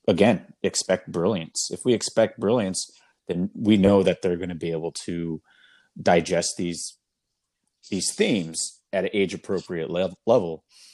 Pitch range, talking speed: 85-105 Hz, 135 wpm